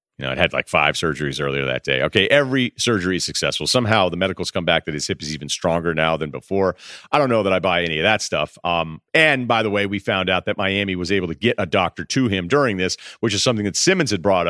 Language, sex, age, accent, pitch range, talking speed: English, male, 40-59, American, 85-120 Hz, 275 wpm